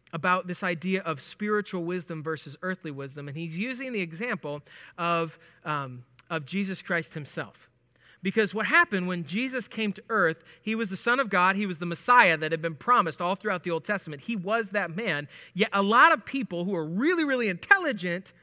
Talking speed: 200 wpm